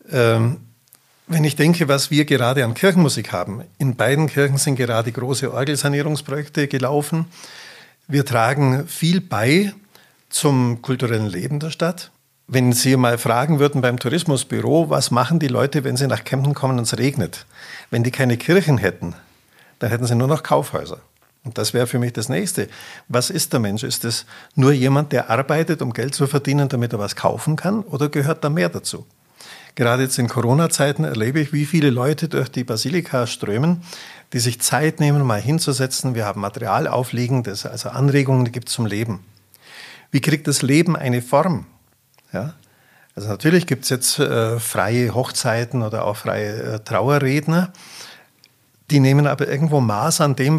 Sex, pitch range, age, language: male, 120-150 Hz, 50-69, German